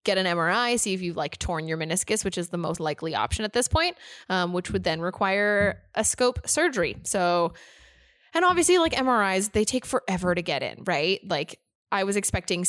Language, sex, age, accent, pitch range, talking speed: English, female, 20-39, American, 180-230 Hz, 205 wpm